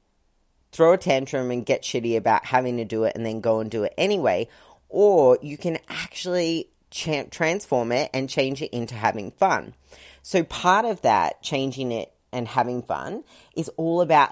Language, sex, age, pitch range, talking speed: English, female, 30-49, 125-160 Hz, 175 wpm